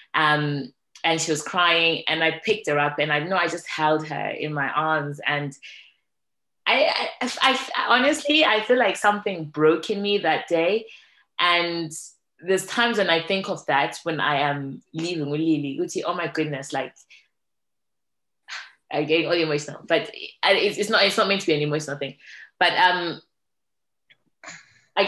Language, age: English, 20-39